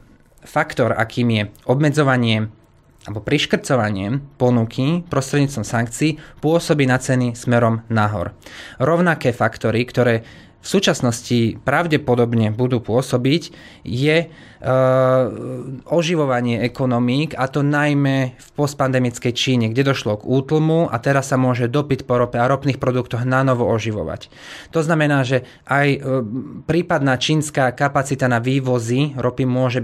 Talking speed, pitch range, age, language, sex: 115 wpm, 120-145 Hz, 20-39, Slovak, male